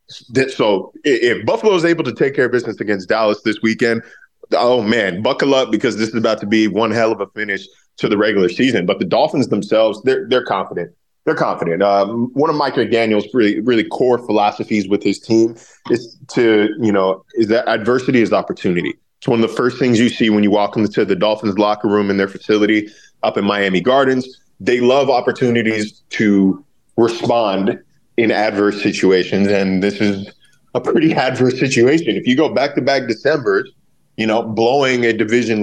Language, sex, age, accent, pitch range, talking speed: English, male, 20-39, American, 105-130 Hz, 190 wpm